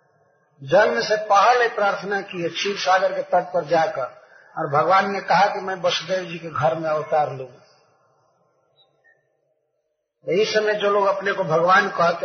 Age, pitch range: 50-69, 165-200 Hz